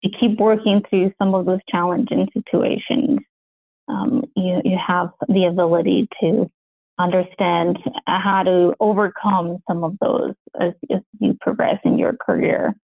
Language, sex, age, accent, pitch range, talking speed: English, female, 20-39, American, 185-230 Hz, 140 wpm